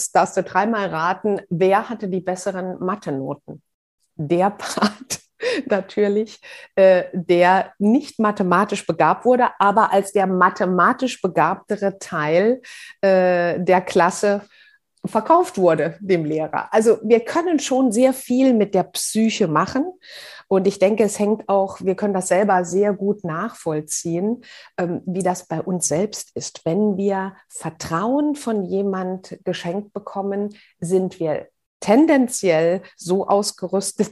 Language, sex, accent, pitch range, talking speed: German, female, German, 180-215 Hz, 125 wpm